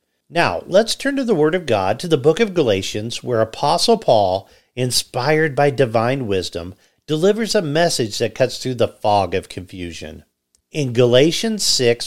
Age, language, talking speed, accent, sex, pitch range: 50-69, English, 165 wpm, American, male, 105-165 Hz